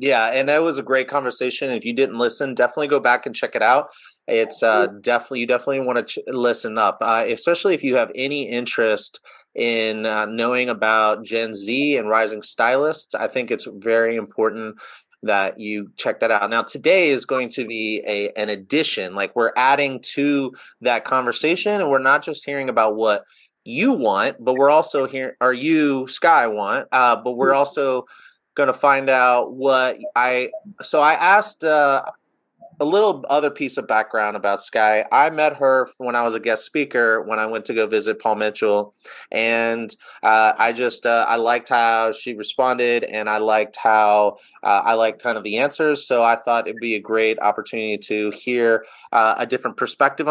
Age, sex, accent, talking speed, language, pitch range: 30-49, male, American, 190 wpm, English, 110-135 Hz